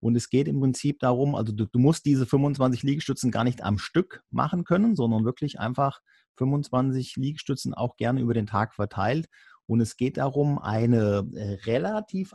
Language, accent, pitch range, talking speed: German, German, 115-140 Hz, 175 wpm